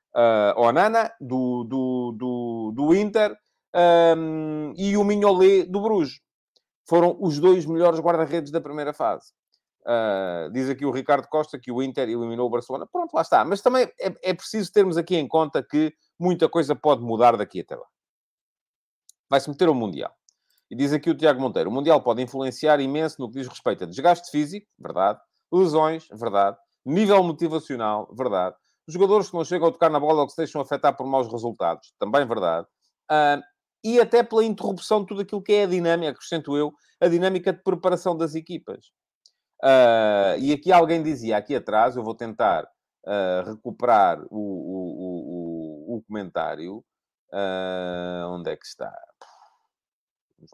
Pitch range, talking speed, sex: 125-180 Hz, 175 wpm, male